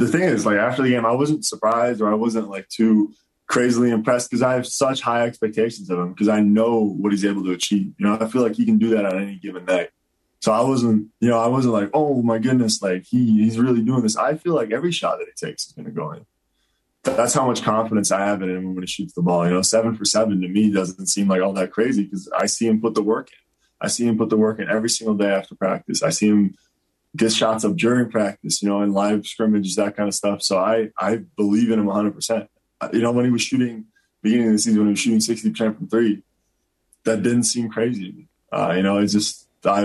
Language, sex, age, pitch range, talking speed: English, male, 10-29, 95-115 Hz, 265 wpm